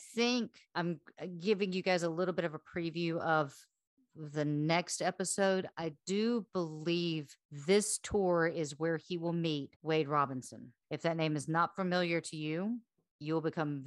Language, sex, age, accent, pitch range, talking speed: English, female, 40-59, American, 155-185 Hz, 165 wpm